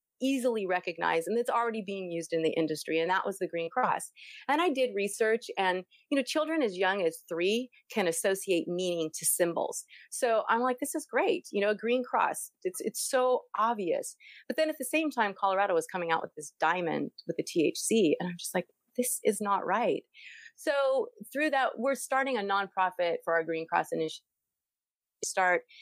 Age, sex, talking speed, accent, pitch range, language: 30-49, female, 200 wpm, American, 175-265 Hz, English